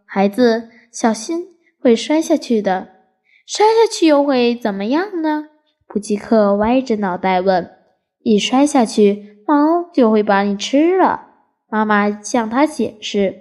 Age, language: 10-29, Chinese